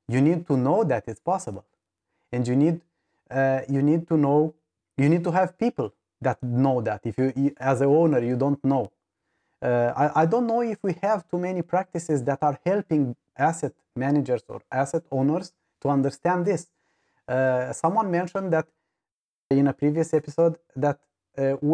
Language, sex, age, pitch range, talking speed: English, male, 30-49, 130-165 Hz, 175 wpm